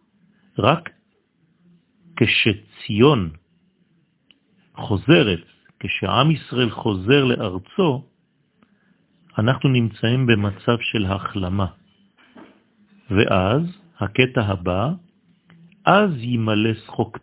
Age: 50-69